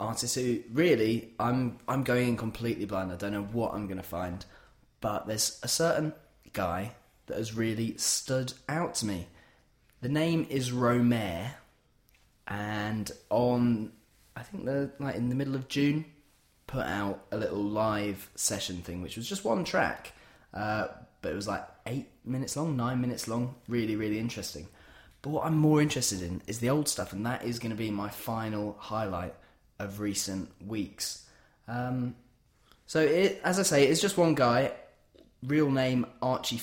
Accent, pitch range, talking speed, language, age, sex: British, 105-130 Hz, 170 wpm, English, 20-39, male